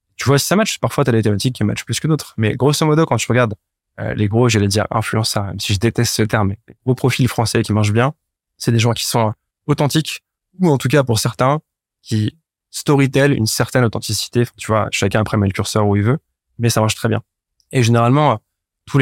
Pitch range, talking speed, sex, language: 110-130 Hz, 235 wpm, male, French